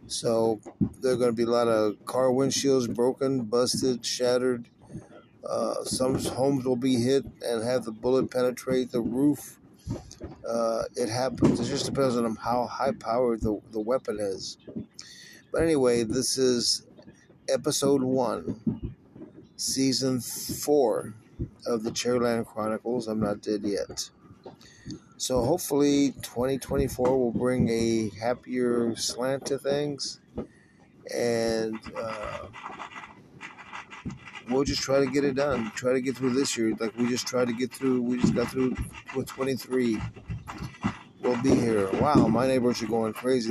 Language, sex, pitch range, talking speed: English, male, 115-130 Hz, 140 wpm